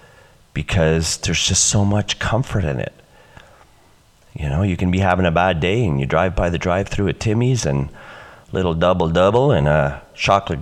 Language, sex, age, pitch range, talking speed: English, male, 30-49, 80-115 Hz, 185 wpm